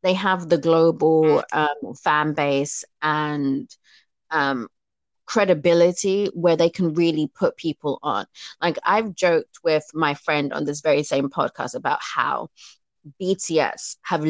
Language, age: English, 20-39